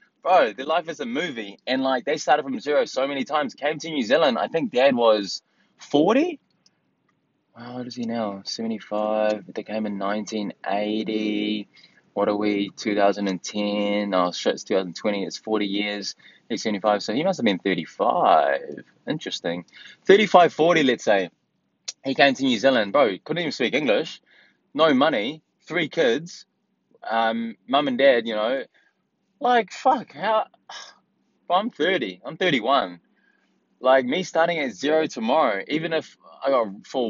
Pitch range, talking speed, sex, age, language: 105-140 Hz, 170 wpm, male, 20-39, English